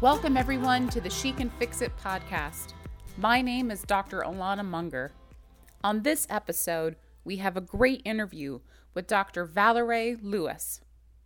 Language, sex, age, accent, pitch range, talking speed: English, female, 30-49, American, 175-235 Hz, 145 wpm